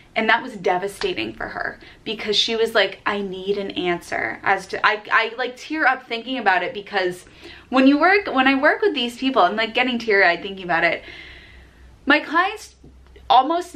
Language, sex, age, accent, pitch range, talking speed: English, female, 20-39, American, 200-270 Hz, 190 wpm